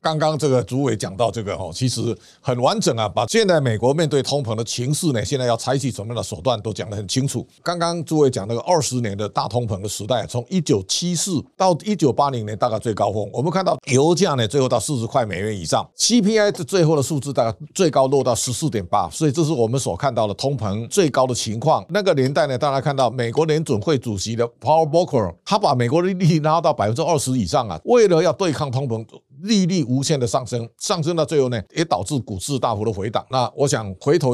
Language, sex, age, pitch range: Chinese, male, 50-69, 115-155 Hz